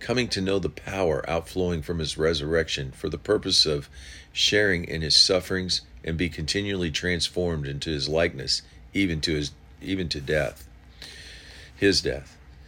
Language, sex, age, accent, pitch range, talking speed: English, male, 50-69, American, 75-90 Hz, 150 wpm